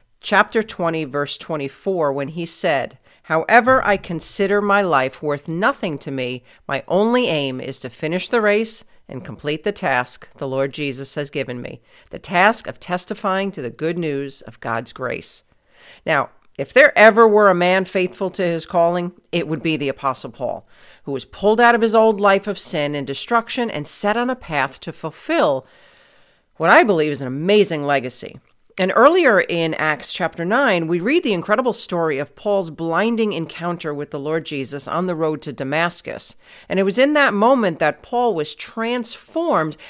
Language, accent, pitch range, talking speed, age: English, American, 150-215 Hz, 185 wpm, 40-59